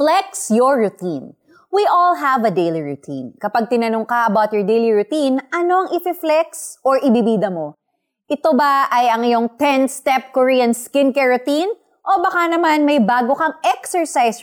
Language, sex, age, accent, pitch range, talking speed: Filipino, female, 20-39, native, 220-300 Hz, 155 wpm